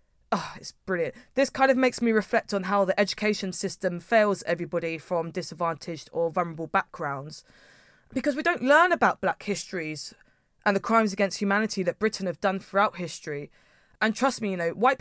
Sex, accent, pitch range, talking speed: female, British, 180-225 Hz, 175 wpm